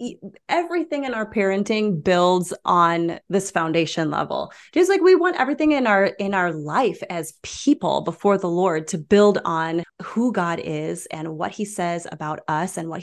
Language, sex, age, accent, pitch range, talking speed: English, female, 30-49, American, 165-200 Hz, 175 wpm